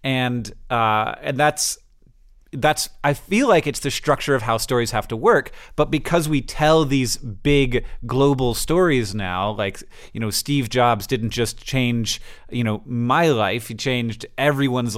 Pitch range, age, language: 110-135 Hz, 30-49, English